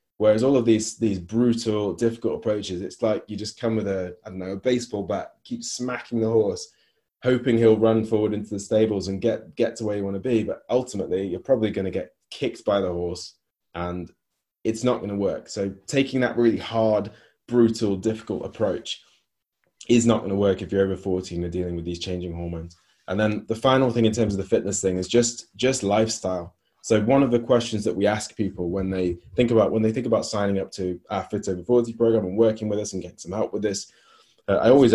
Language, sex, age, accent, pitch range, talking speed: English, male, 20-39, British, 95-115 Hz, 225 wpm